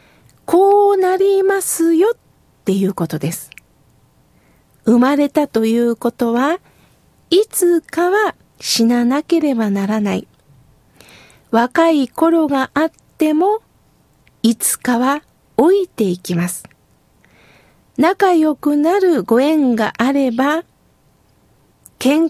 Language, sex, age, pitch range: Japanese, female, 50-69, 230-315 Hz